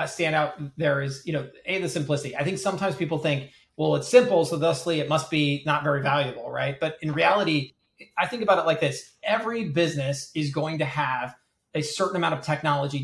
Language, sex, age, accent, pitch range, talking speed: English, male, 30-49, American, 150-190 Hz, 210 wpm